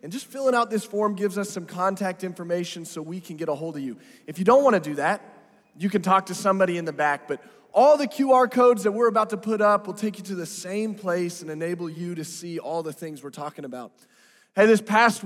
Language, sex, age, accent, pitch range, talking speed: English, male, 20-39, American, 170-220 Hz, 260 wpm